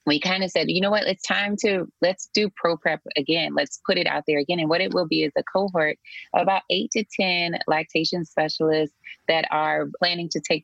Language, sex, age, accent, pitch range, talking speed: English, female, 20-39, American, 150-180 Hz, 230 wpm